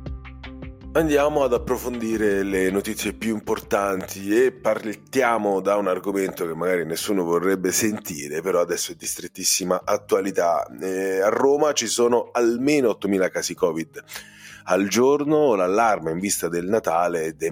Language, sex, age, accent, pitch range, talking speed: Italian, male, 30-49, native, 95-125 Hz, 135 wpm